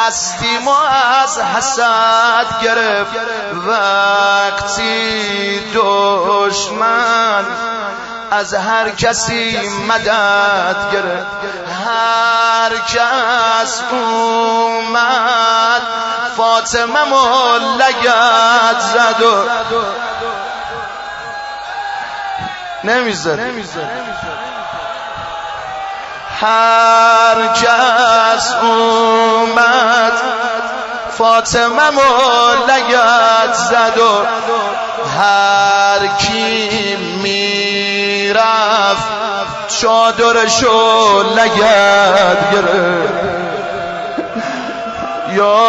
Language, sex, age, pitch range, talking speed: Persian, male, 30-49, 205-235 Hz, 45 wpm